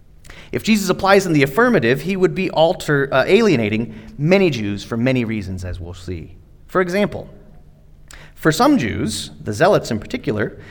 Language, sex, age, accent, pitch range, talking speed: English, male, 30-49, American, 95-155 Hz, 155 wpm